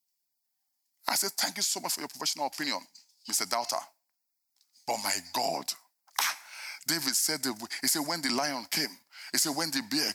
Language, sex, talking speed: English, male, 165 wpm